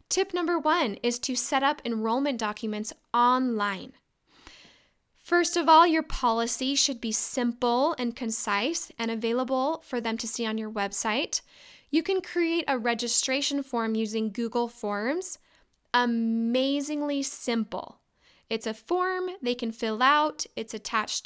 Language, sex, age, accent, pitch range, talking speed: English, female, 10-29, American, 225-300 Hz, 140 wpm